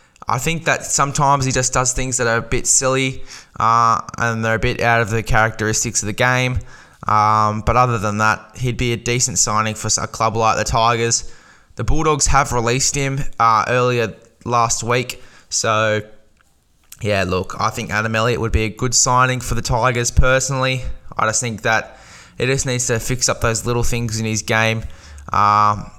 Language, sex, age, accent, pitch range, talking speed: English, male, 10-29, Australian, 110-125 Hz, 190 wpm